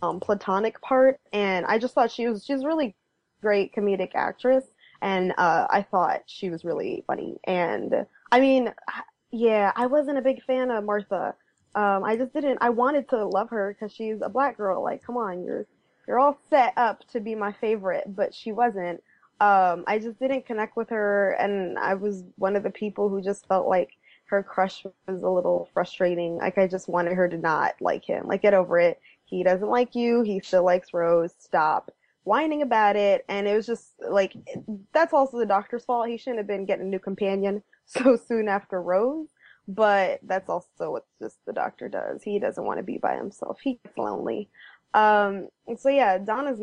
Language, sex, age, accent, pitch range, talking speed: English, female, 20-39, American, 190-245 Hz, 200 wpm